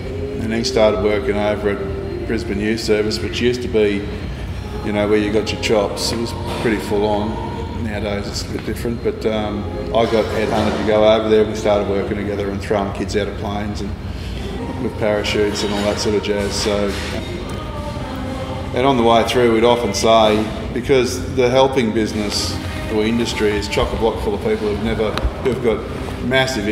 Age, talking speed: 20-39, 185 wpm